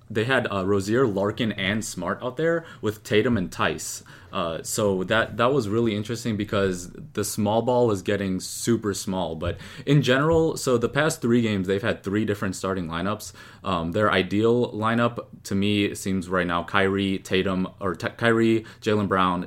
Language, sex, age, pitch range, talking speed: English, male, 20-39, 95-115 Hz, 180 wpm